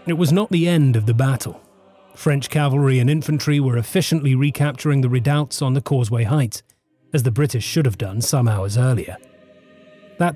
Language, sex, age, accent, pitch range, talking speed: English, male, 30-49, British, 115-150 Hz, 180 wpm